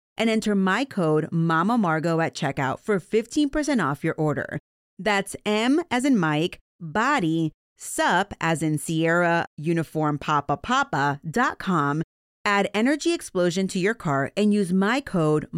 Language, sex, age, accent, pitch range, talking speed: English, female, 30-49, American, 160-235 Hz, 145 wpm